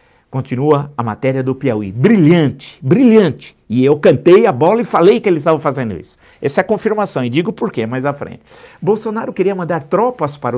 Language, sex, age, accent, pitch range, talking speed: Portuguese, male, 50-69, Brazilian, 155-225 Hz, 200 wpm